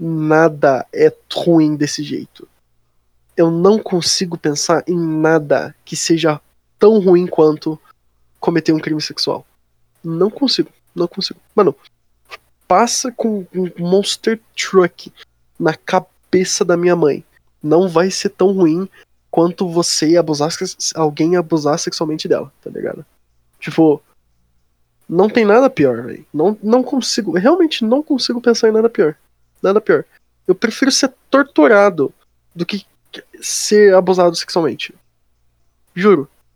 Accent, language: Brazilian, Portuguese